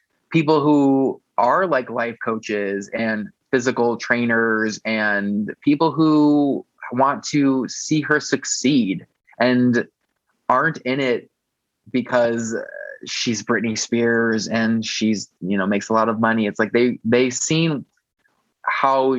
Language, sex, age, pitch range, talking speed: English, male, 20-39, 115-135 Hz, 125 wpm